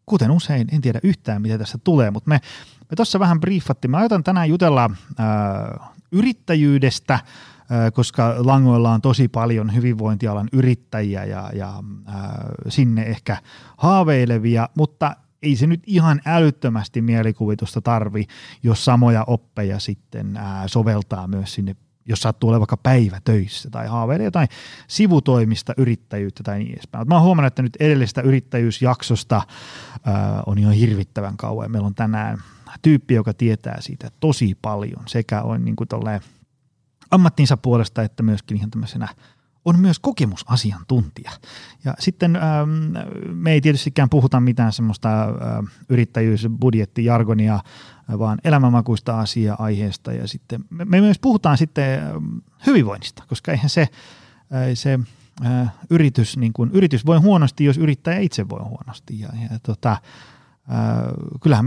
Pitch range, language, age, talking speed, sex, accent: 110-145 Hz, Finnish, 30-49, 130 wpm, male, native